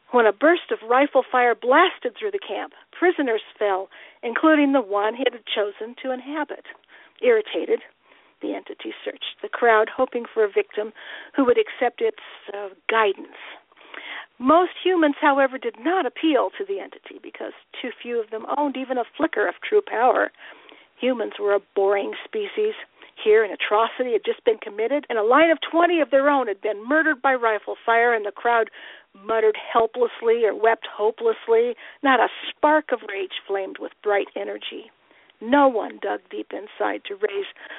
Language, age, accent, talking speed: English, 50-69, American, 170 wpm